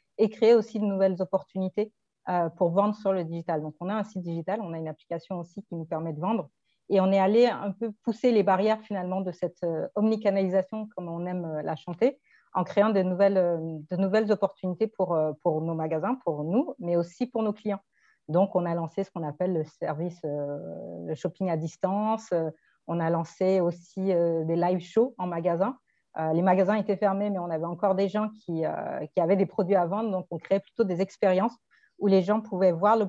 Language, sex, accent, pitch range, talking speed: French, female, French, 175-210 Hz, 205 wpm